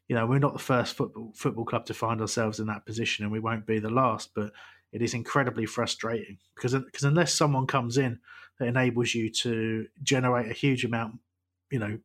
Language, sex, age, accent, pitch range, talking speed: English, male, 30-49, British, 110-135 Hz, 210 wpm